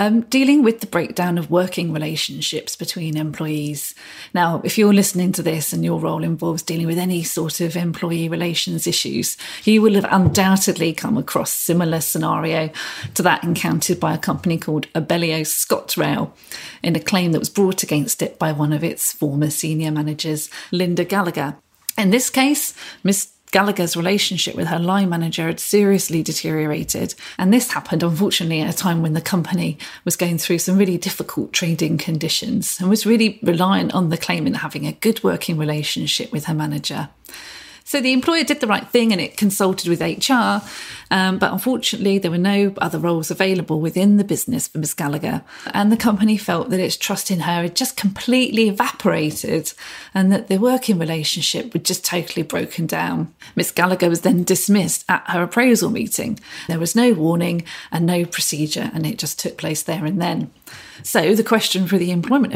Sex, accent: female, British